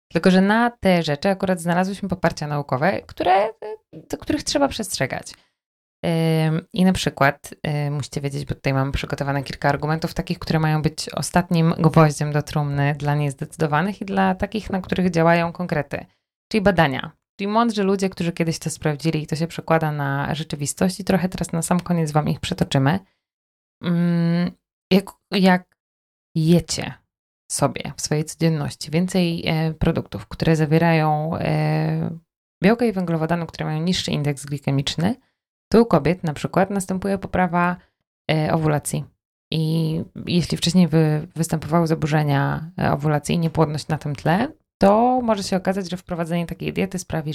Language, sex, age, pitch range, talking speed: Polish, female, 20-39, 150-185 Hz, 150 wpm